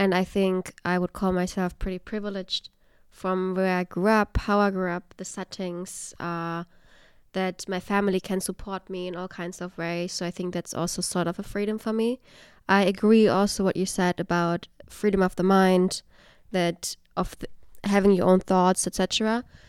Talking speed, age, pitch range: 190 wpm, 20-39, 185-215 Hz